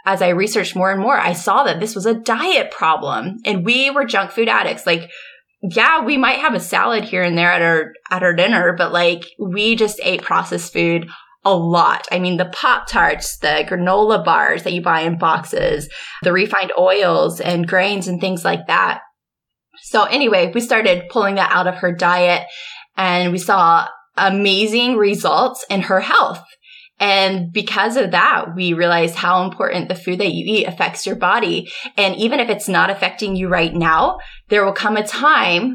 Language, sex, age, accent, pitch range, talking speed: English, female, 20-39, American, 175-210 Hz, 190 wpm